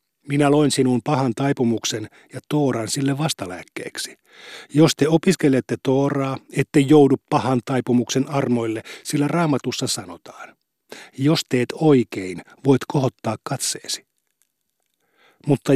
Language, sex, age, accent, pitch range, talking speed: Finnish, male, 50-69, native, 125-150 Hz, 105 wpm